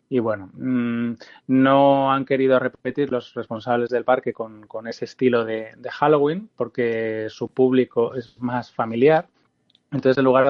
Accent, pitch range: Spanish, 120-135 Hz